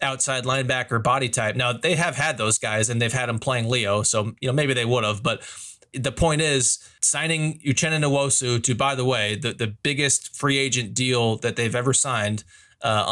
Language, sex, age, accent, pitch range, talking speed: English, male, 30-49, American, 115-135 Hz, 205 wpm